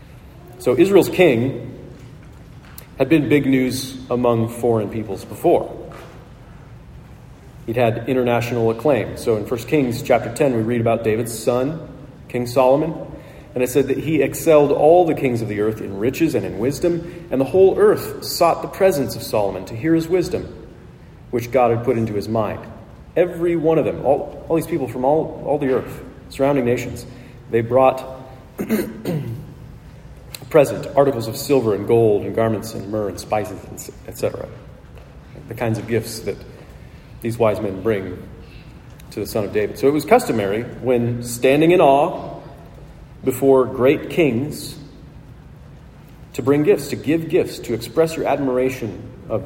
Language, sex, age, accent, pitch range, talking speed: English, male, 40-59, American, 115-140 Hz, 160 wpm